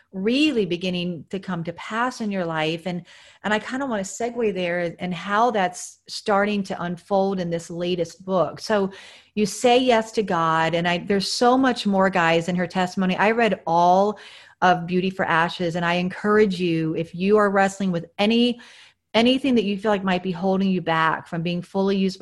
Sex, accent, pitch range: female, American, 175-215 Hz